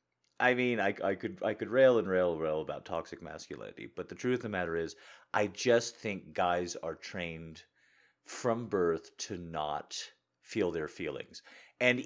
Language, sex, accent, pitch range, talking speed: English, male, American, 85-120 Hz, 180 wpm